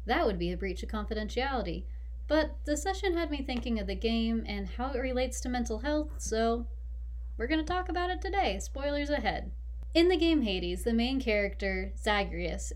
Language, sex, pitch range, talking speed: English, female, 185-290 Hz, 195 wpm